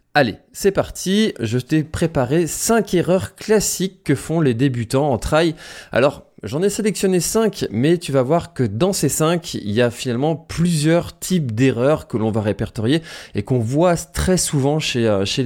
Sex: male